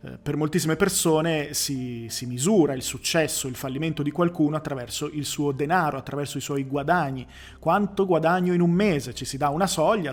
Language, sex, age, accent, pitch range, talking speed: Italian, male, 30-49, native, 150-175 Hz, 180 wpm